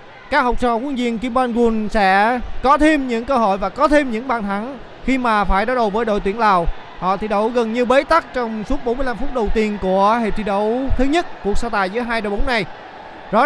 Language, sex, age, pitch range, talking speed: Vietnamese, male, 20-39, 215-260 Hz, 250 wpm